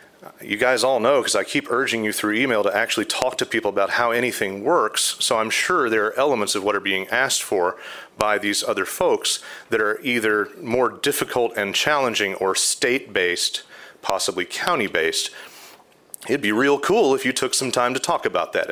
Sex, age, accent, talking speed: male, 40-59, American, 190 wpm